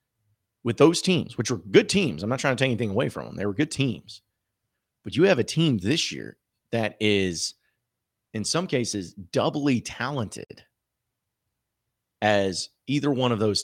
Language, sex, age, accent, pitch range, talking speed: English, male, 30-49, American, 95-125 Hz, 170 wpm